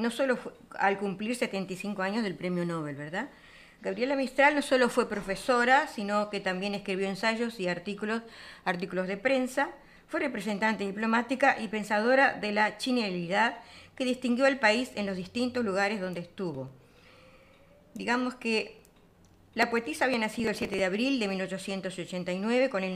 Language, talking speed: Spanish, 155 wpm